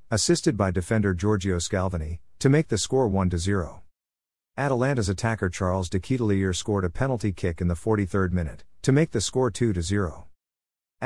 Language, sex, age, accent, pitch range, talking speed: English, male, 50-69, American, 90-115 Hz, 145 wpm